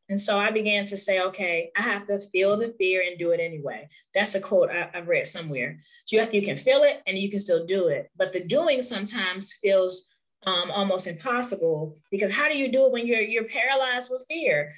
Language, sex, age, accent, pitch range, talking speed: English, female, 20-39, American, 180-220 Hz, 235 wpm